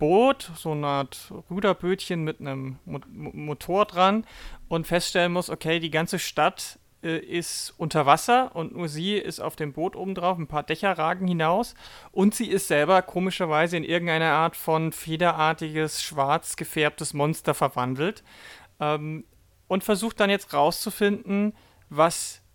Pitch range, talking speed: 150-185 Hz, 145 wpm